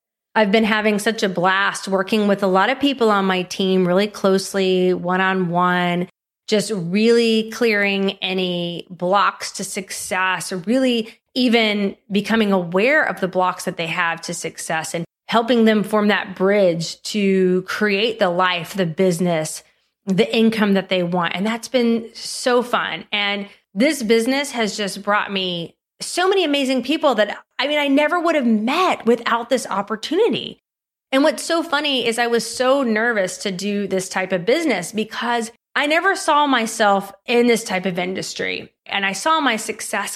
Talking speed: 165 wpm